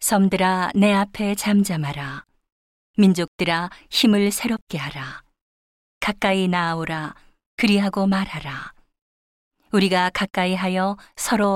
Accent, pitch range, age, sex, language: native, 170-205 Hz, 40-59, female, Korean